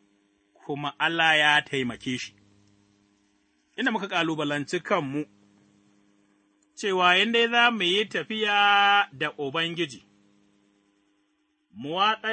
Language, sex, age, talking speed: English, male, 30-49, 80 wpm